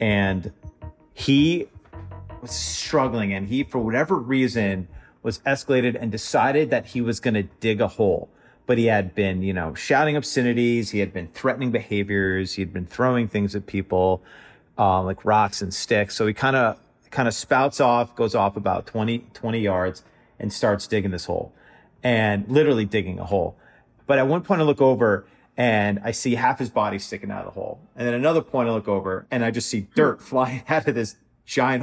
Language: English